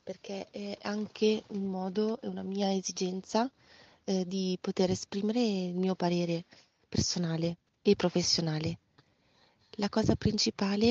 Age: 30-49